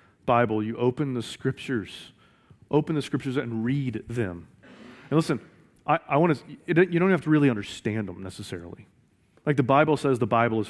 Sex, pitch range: male, 110-135 Hz